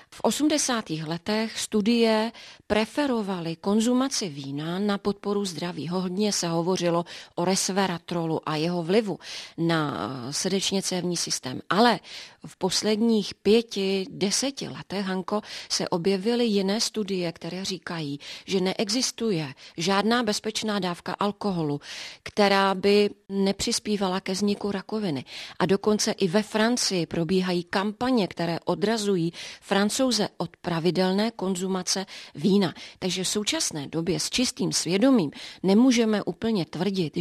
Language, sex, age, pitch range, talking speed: Czech, female, 30-49, 180-215 Hz, 115 wpm